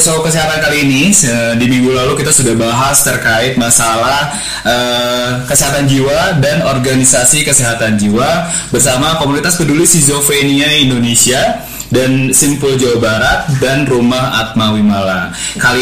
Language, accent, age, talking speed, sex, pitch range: Indonesian, native, 20-39, 120 wpm, male, 120-155 Hz